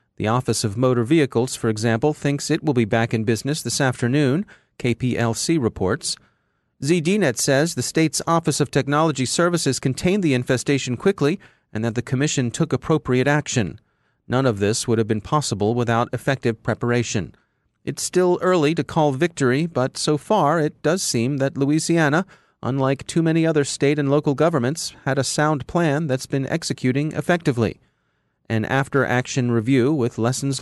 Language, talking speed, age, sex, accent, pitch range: English, 160 wpm, 30-49, male, American, 120-150 Hz